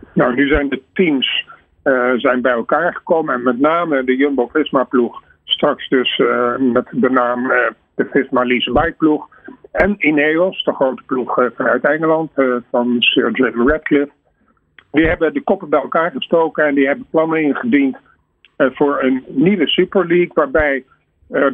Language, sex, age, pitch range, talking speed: Dutch, male, 50-69, 130-165 Hz, 160 wpm